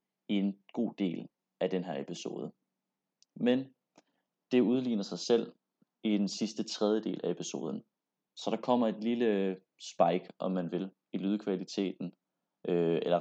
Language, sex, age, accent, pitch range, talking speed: Danish, male, 30-49, native, 95-120 Hz, 140 wpm